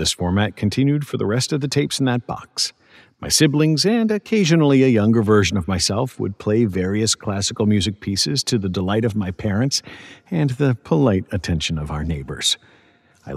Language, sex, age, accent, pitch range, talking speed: English, male, 50-69, American, 90-125 Hz, 185 wpm